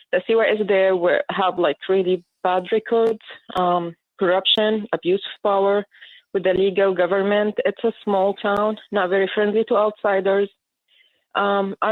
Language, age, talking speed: English, 20-39, 130 wpm